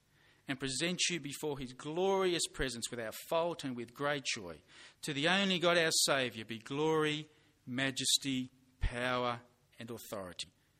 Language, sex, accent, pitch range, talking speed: English, male, Australian, 130-170 Hz, 145 wpm